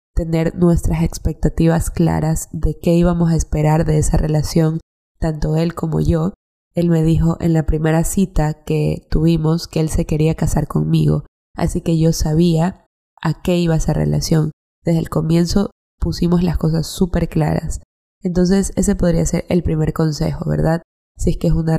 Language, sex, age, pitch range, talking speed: Spanish, female, 20-39, 150-175 Hz, 170 wpm